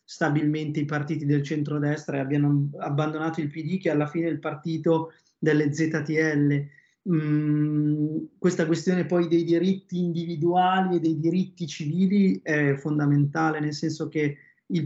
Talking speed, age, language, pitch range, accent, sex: 145 wpm, 20-39, Italian, 145-165 Hz, native, male